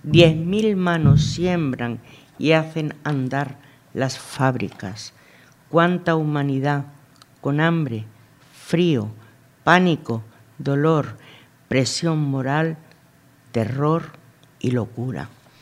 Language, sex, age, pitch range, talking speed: Spanish, female, 50-69, 125-155 Hz, 80 wpm